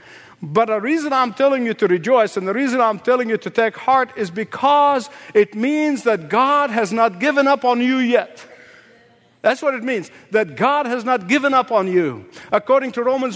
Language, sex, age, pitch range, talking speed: English, male, 60-79, 210-270 Hz, 200 wpm